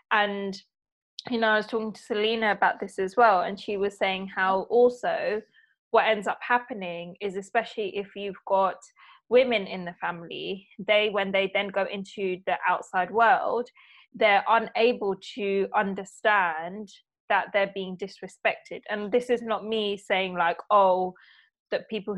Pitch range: 190-220 Hz